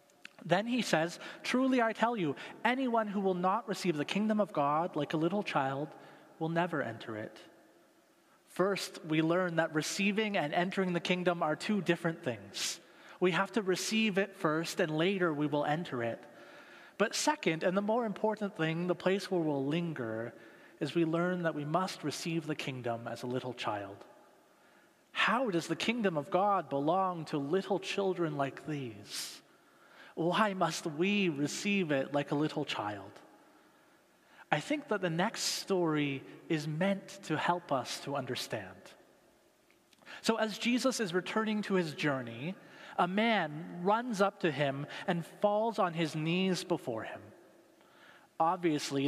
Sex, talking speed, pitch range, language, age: male, 160 wpm, 150-195 Hz, English, 30-49